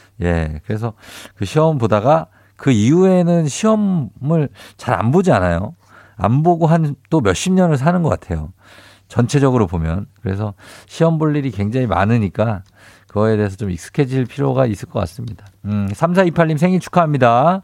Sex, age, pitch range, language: male, 50-69, 105-155 Hz, Korean